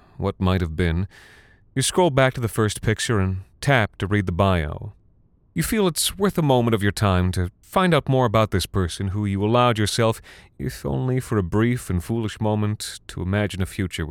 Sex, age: male, 30-49